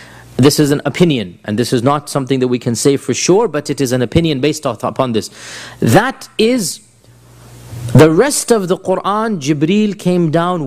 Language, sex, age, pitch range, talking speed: English, male, 40-59, 135-185 Hz, 190 wpm